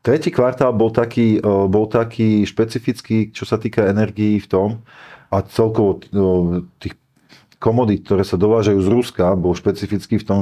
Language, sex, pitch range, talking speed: Slovak, male, 100-115 Hz, 150 wpm